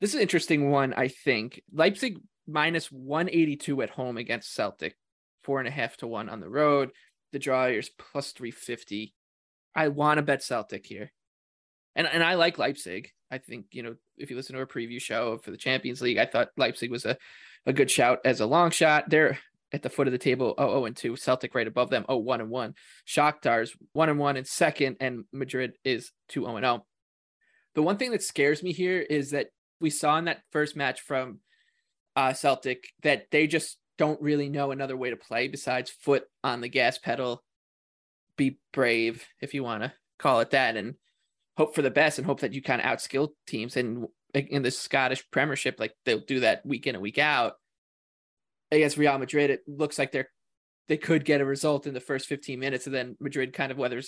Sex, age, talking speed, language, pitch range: male, 20-39, 210 wpm, English, 125-150 Hz